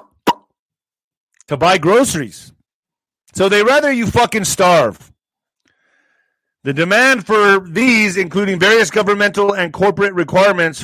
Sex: male